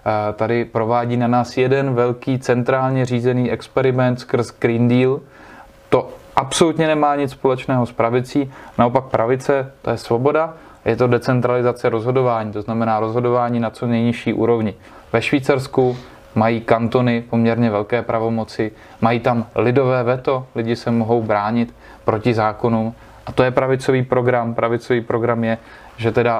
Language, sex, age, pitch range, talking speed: Czech, male, 20-39, 115-125 Hz, 140 wpm